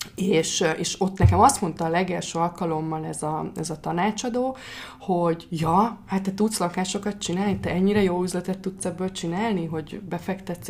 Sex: female